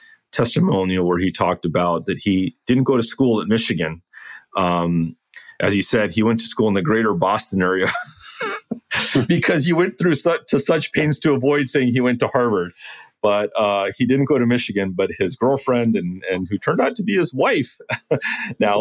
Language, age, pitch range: English, 40-59, 85-115 Hz